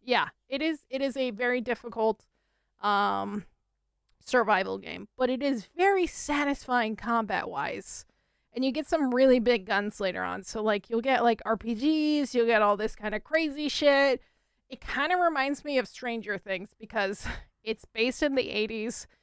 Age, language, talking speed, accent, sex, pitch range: 20-39, English, 170 wpm, American, female, 215-260 Hz